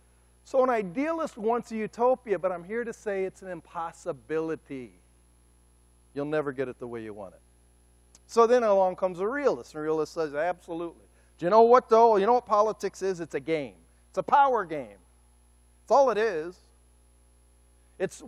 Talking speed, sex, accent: 185 wpm, male, American